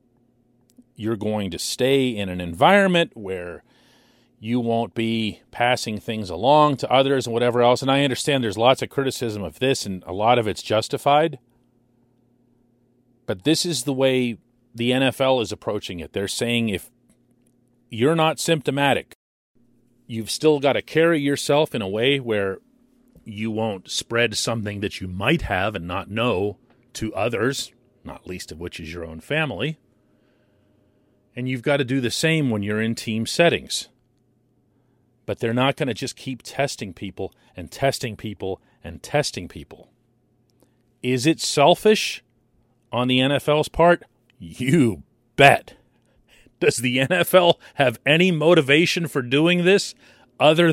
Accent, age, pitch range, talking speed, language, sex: American, 40-59, 110-145 Hz, 150 wpm, English, male